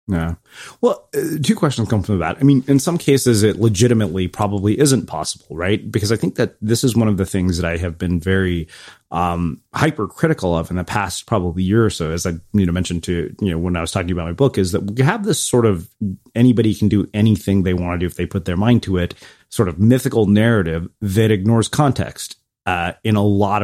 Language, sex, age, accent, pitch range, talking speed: English, male, 30-49, American, 95-120 Hz, 230 wpm